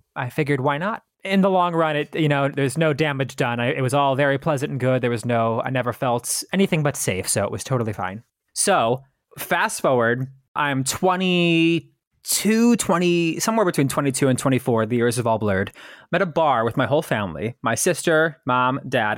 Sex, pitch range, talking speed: male, 130-180 Hz, 205 wpm